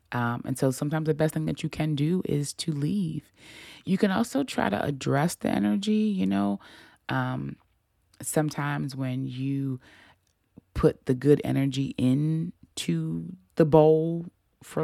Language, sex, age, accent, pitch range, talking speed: English, female, 20-39, American, 115-150 Hz, 145 wpm